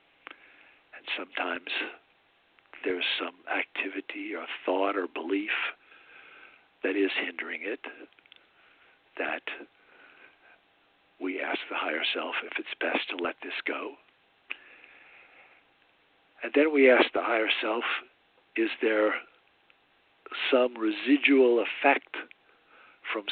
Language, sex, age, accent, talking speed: English, male, 60-79, American, 100 wpm